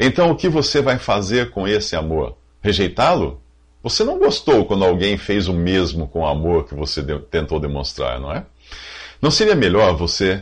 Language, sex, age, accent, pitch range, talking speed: English, male, 50-69, Brazilian, 70-115 Hz, 180 wpm